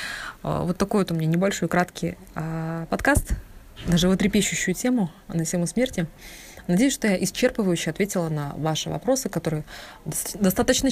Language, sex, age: Russian, female, 20-39